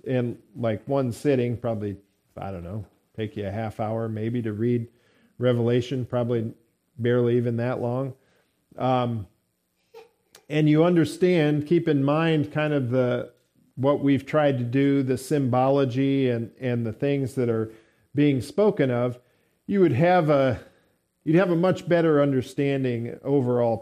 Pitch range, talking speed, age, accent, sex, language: 115-145 Hz, 150 wpm, 50-69, American, male, English